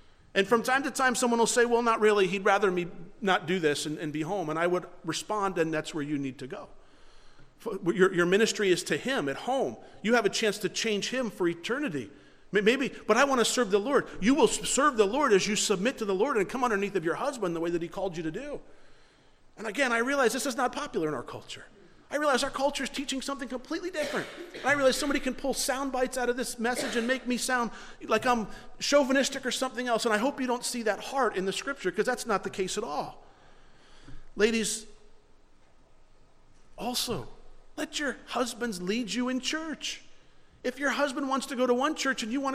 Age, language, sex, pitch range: 40-59, English, male, 195-270 Hz